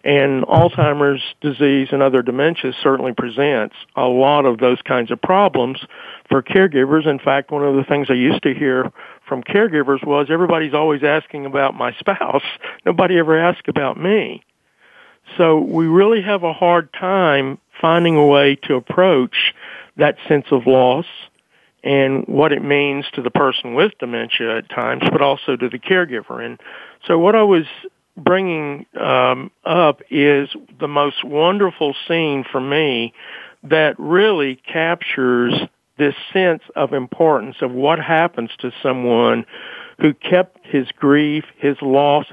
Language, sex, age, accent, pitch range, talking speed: English, male, 50-69, American, 135-165 Hz, 150 wpm